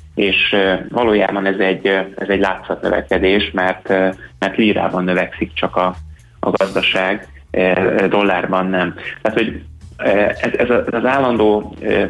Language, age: Hungarian, 20-39